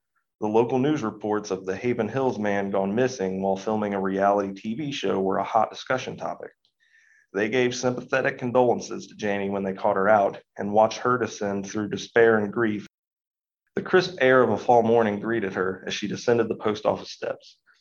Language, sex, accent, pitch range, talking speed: English, male, American, 95-115 Hz, 190 wpm